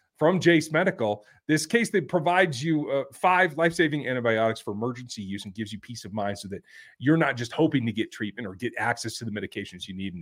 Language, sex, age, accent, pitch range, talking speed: English, male, 30-49, American, 120-155 Hz, 230 wpm